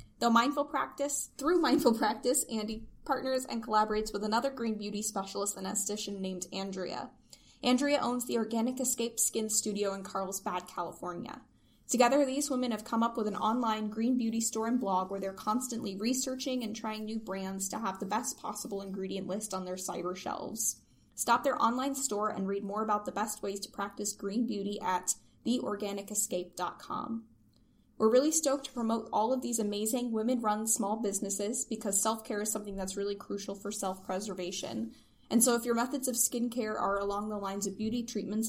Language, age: English, 10-29